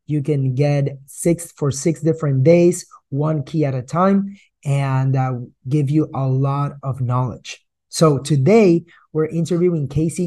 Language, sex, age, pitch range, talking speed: English, male, 20-39, 135-155 Hz, 150 wpm